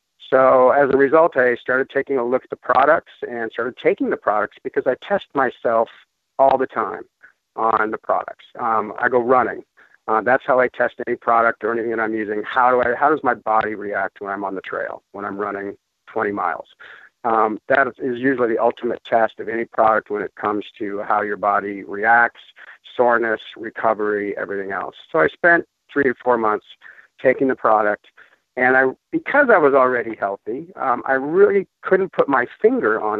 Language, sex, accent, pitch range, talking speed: English, male, American, 105-130 Hz, 195 wpm